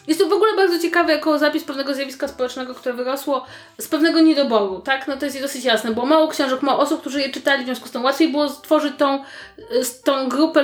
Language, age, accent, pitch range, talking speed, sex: Polish, 20-39, native, 240-315 Hz, 225 wpm, female